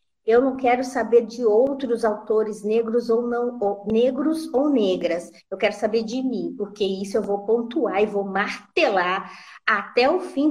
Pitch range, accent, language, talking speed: 195-240 Hz, Brazilian, Portuguese, 155 wpm